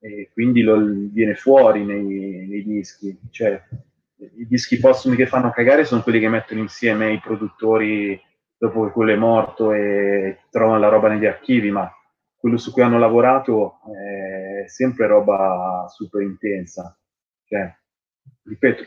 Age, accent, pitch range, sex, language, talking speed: 20-39, native, 95-110 Hz, male, Italian, 135 wpm